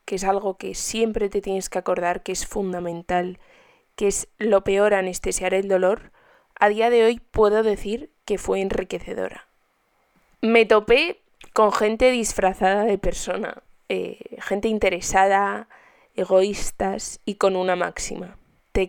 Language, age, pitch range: Spanish, 20-39, 180-210 Hz